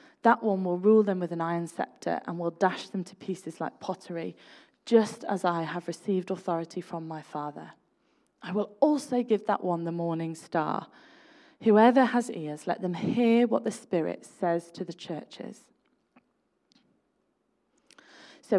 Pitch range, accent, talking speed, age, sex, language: 180-275 Hz, British, 160 wpm, 20-39, female, English